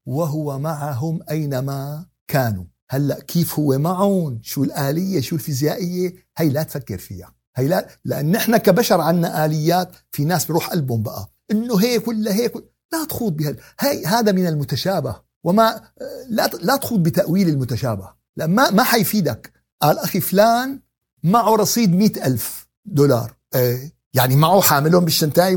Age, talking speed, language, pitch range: 60-79, 145 wpm, Arabic, 150-210 Hz